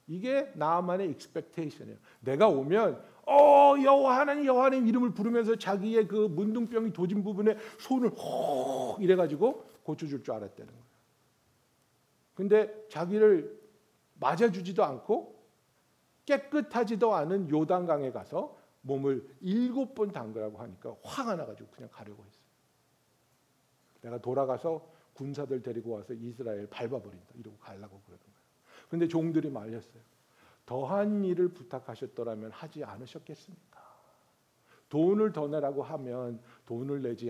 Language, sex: Korean, male